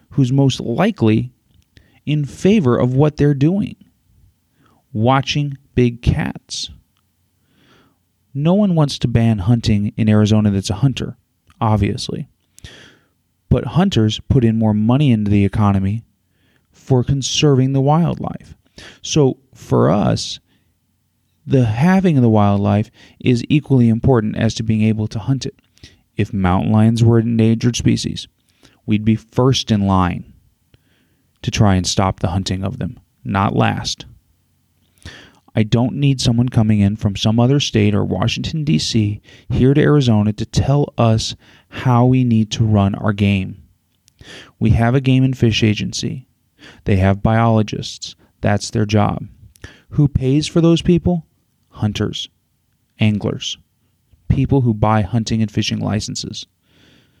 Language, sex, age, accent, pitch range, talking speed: English, male, 30-49, American, 105-130 Hz, 135 wpm